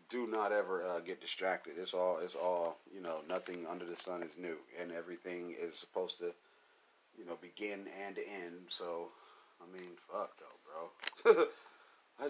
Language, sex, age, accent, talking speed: English, male, 30-49, American, 170 wpm